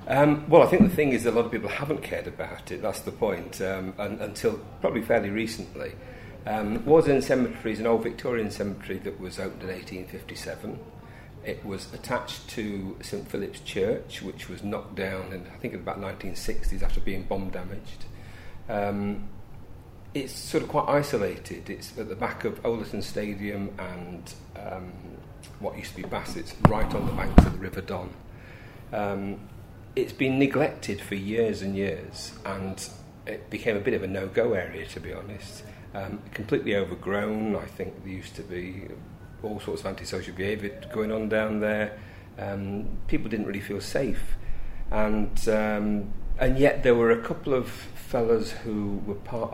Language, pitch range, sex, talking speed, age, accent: English, 95-110 Hz, male, 175 wpm, 40-59, British